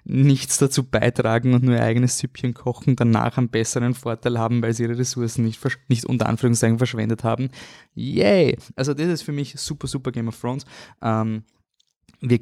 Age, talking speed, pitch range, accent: 20-39, 180 wpm, 115-130 Hz, German